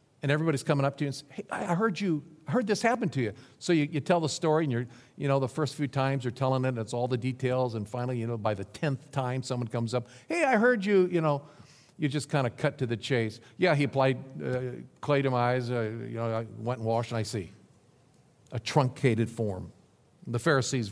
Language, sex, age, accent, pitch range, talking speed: English, male, 50-69, American, 115-150 Hz, 255 wpm